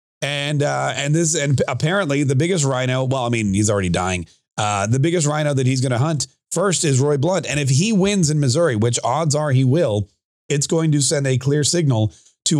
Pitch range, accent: 125-160 Hz, American